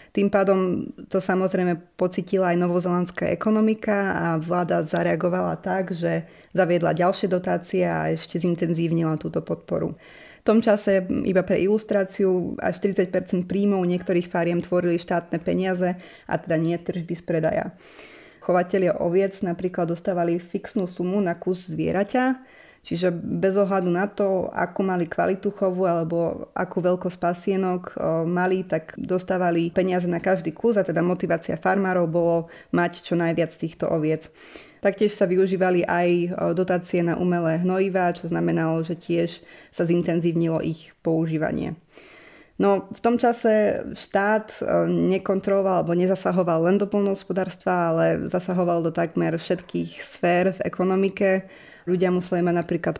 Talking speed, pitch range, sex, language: 135 wpm, 170-190 Hz, female, Slovak